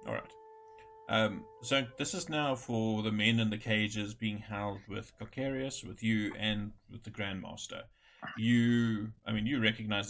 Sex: male